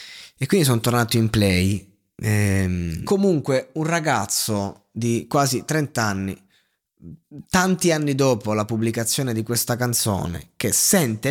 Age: 20-39